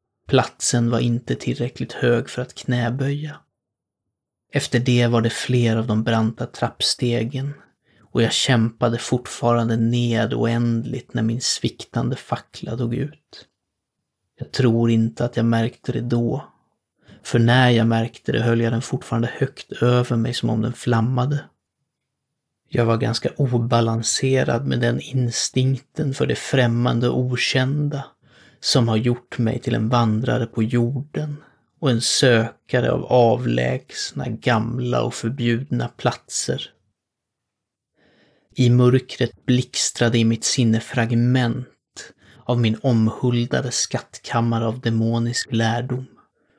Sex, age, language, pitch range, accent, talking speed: male, 30-49, Swedish, 115-125 Hz, native, 125 wpm